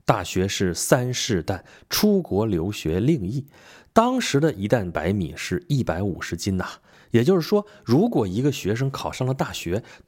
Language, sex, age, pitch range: Chinese, male, 30-49, 95-150 Hz